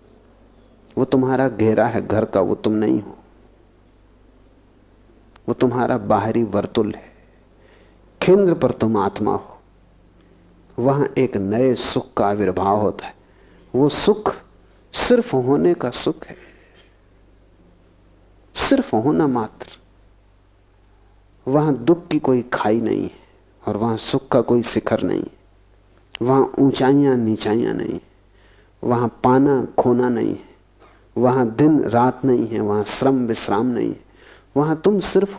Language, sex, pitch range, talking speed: English, male, 100-130 Hz, 130 wpm